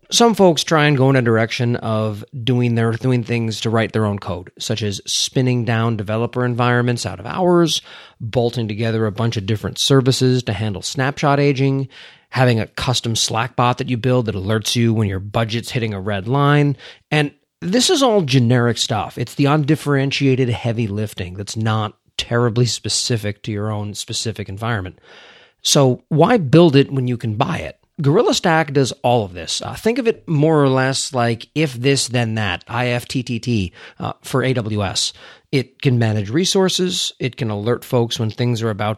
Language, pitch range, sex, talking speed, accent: English, 110-140 Hz, male, 180 wpm, American